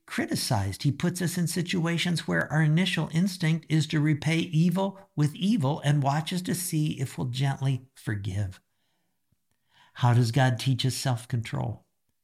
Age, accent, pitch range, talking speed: 50-69, American, 110-160 Hz, 150 wpm